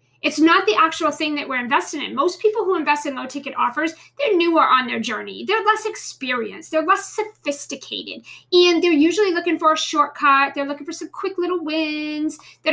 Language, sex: English, female